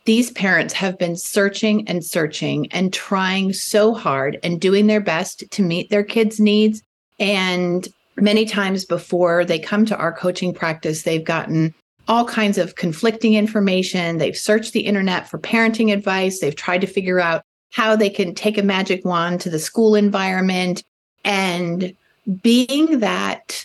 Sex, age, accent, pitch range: female, 40-59, American, 175-210 Hz